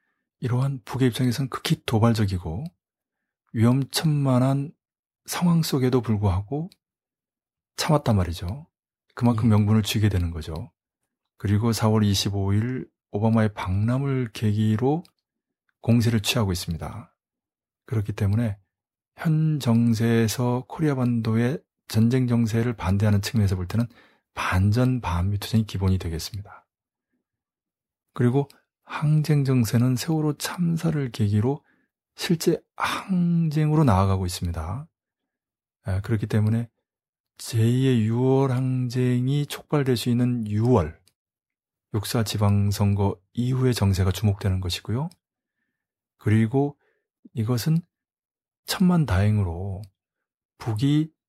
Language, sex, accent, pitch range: Korean, male, native, 105-135 Hz